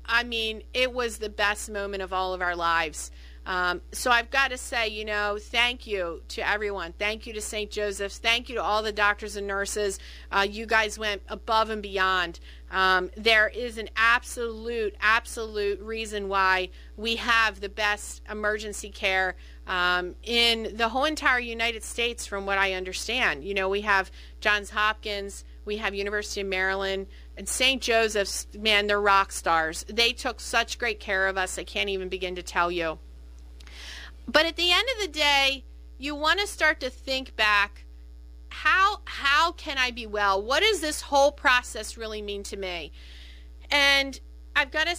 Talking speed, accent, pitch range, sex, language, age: 180 wpm, American, 190-235 Hz, female, English, 30-49